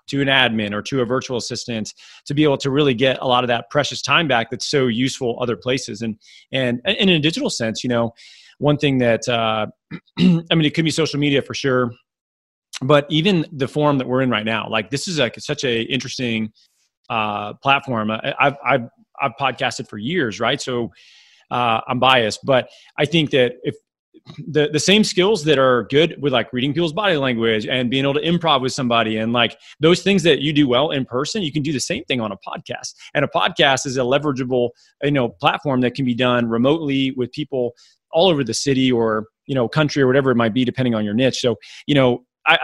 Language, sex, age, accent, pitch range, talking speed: English, male, 30-49, American, 120-150 Hz, 225 wpm